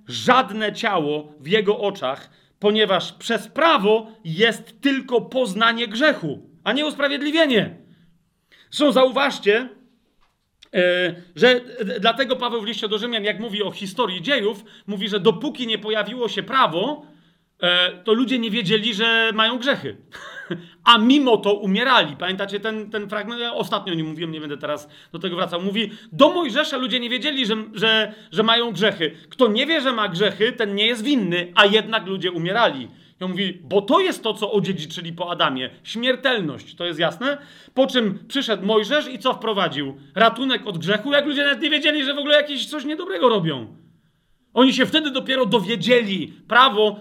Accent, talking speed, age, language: native, 165 wpm, 40-59, Polish